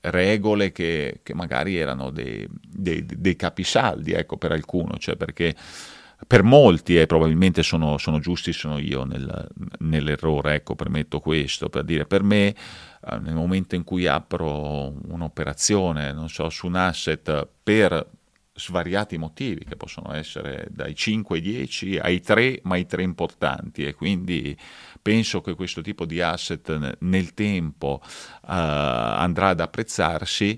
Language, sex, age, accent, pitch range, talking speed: Italian, male, 40-59, native, 80-105 Hz, 145 wpm